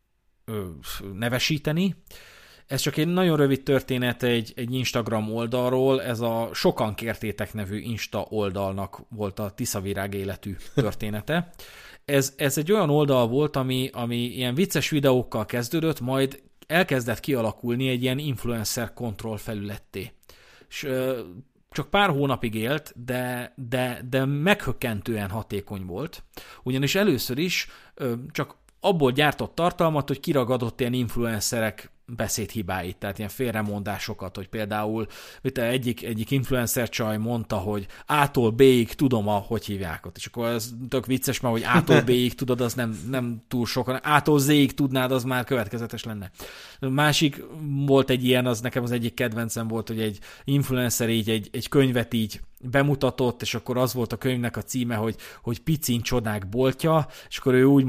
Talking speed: 150 wpm